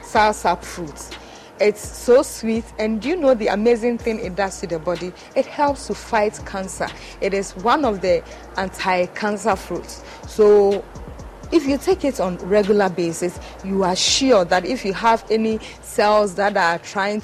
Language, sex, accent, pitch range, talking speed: English, female, Nigerian, 185-220 Hz, 165 wpm